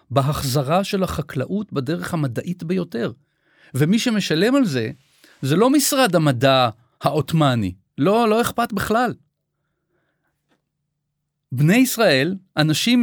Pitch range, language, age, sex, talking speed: 135-185 Hz, Hebrew, 40-59, male, 100 wpm